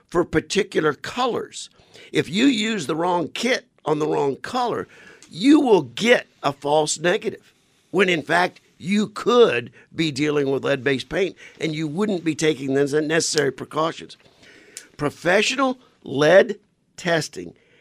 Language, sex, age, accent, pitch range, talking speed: English, male, 50-69, American, 135-170 Hz, 135 wpm